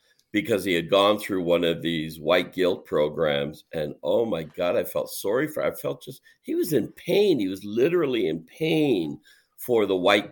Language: English